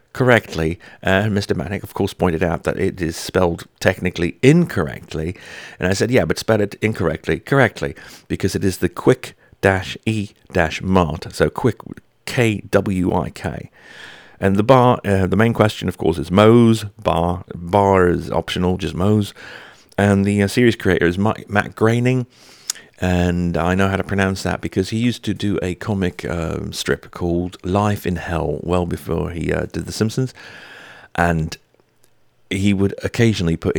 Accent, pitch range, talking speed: British, 85-105 Hz, 165 wpm